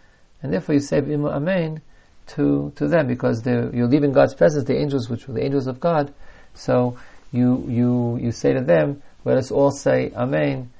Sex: male